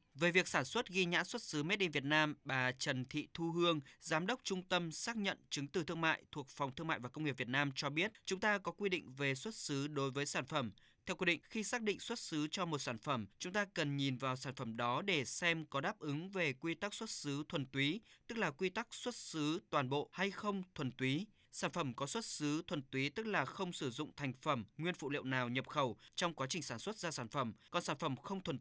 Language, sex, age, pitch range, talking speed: Vietnamese, male, 20-39, 135-185 Hz, 265 wpm